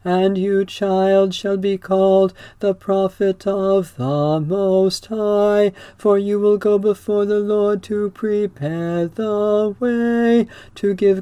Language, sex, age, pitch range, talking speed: English, male, 40-59, 195-210 Hz, 135 wpm